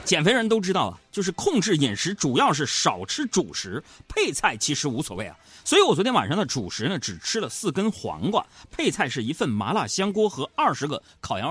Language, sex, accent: Chinese, male, native